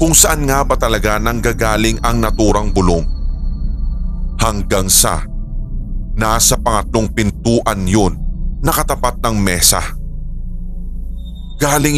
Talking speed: 95 wpm